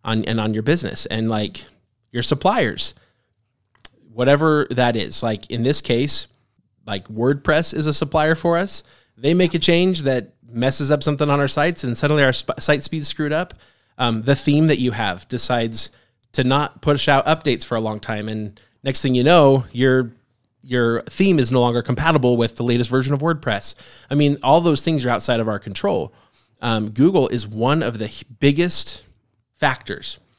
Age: 20-39